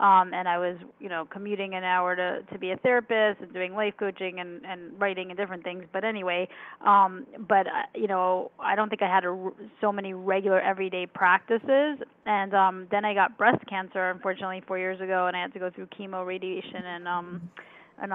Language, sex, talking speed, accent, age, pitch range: English, female, 200 wpm, American, 10-29, 185-210 Hz